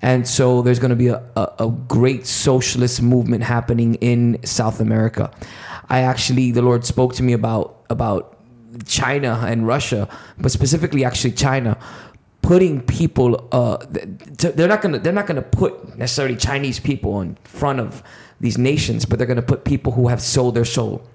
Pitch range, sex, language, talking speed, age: 115-130 Hz, male, English, 170 wpm, 20-39